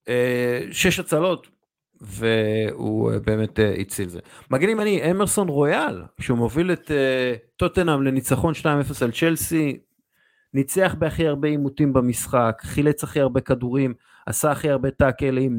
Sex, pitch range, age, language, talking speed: male, 115-145 Hz, 50-69, Hebrew, 130 wpm